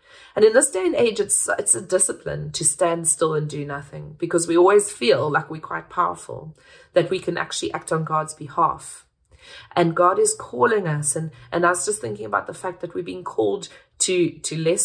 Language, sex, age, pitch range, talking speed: English, female, 30-49, 160-210 Hz, 215 wpm